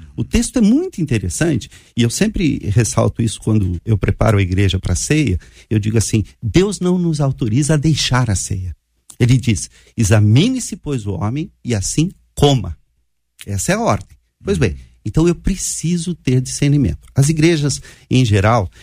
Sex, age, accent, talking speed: male, 50-69, Brazilian, 170 wpm